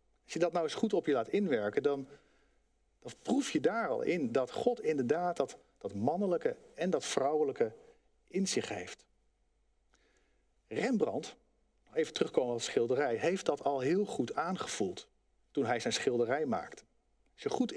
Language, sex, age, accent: Dutch, male, 50-69, Dutch